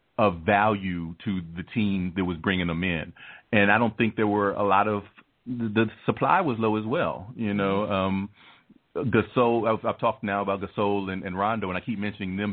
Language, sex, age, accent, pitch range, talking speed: English, male, 40-59, American, 95-110 Hz, 200 wpm